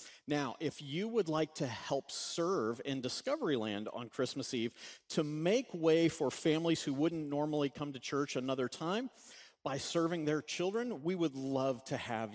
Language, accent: English, American